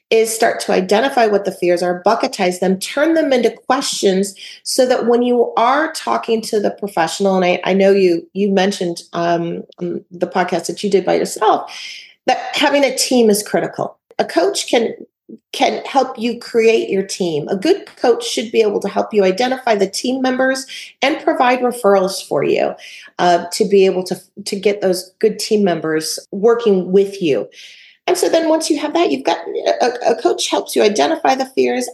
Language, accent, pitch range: English, American, 195-270 Hz